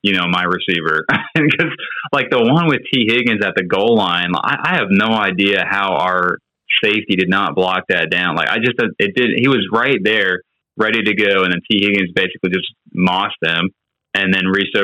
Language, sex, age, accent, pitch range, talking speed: English, male, 20-39, American, 85-100 Hz, 205 wpm